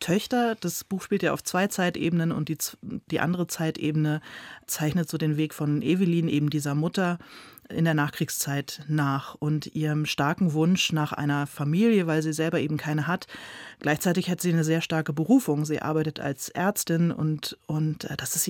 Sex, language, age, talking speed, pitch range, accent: female, German, 30-49, 175 wpm, 150-175 Hz, German